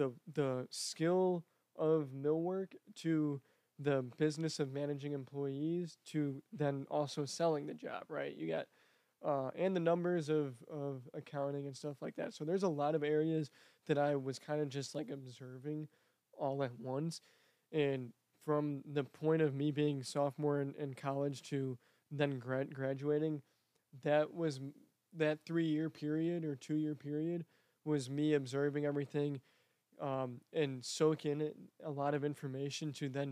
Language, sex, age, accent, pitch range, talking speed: English, male, 20-39, American, 135-155 Hz, 150 wpm